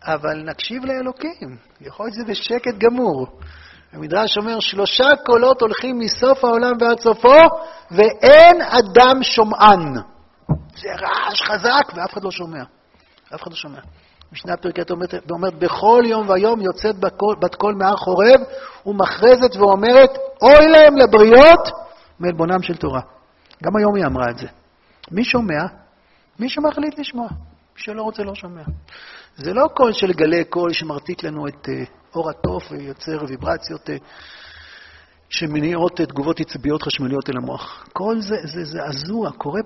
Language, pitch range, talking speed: Hebrew, 160-240 Hz, 135 wpm